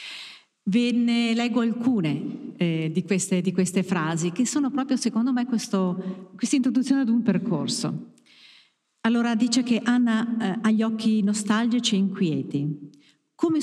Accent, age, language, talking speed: native, 50-69, Italian, 140 wpm